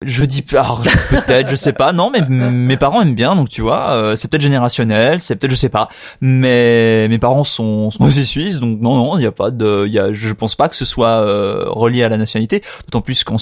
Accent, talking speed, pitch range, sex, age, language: French, 255 wpm, 120-160 Hz, male, 20-39, French